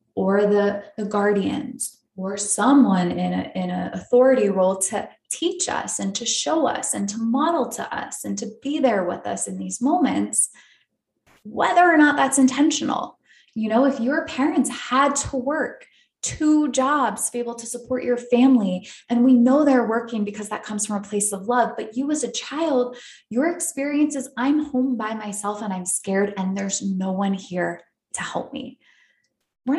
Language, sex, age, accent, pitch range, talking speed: English, female, 20-39, American, 195-255 Hz, 185 wpm